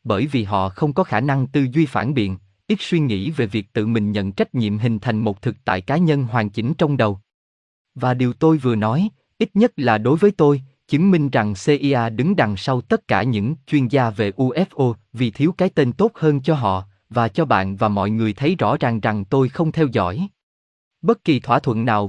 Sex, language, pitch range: male, Vietnamese, 110-155 Hz